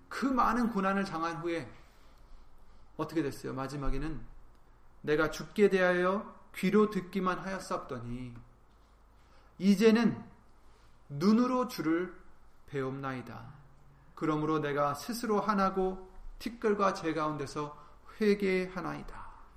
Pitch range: 125-195 Hz